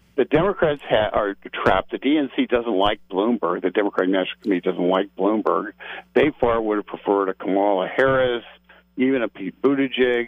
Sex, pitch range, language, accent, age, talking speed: male, 95-120 Hz, English, American, 50-69, 165 wpm